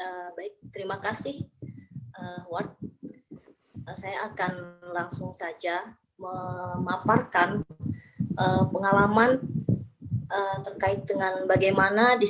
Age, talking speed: 20-39, 90 wpm